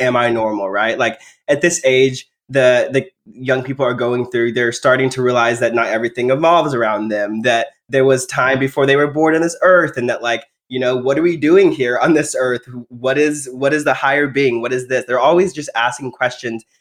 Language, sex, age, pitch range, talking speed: English, male, 20-39, 120-150 Hz, 230 wpm